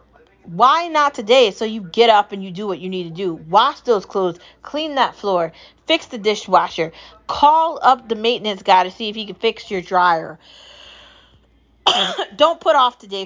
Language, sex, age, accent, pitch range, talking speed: English, female, 30-49, American, 190-285 Hz, 185 wpm